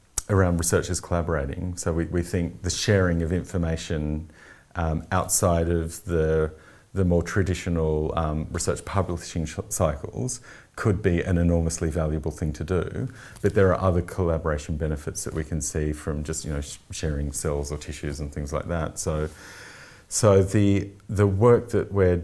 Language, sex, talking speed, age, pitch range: English, male, 165 wpm, 40-59, 80-100 Hz